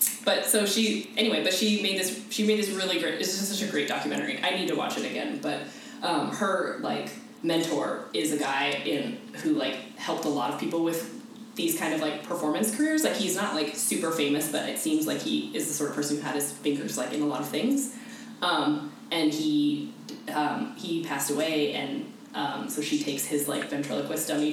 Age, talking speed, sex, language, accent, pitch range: 10-29, 220 wpm, female, English, American, 150-240 Hz